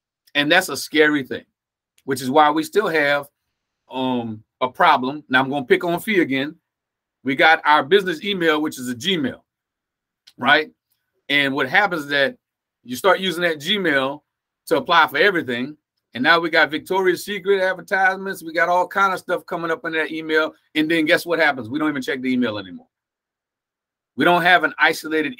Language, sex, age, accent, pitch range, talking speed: English, male, 40-59, American, 140-195 Hz, 190 wpm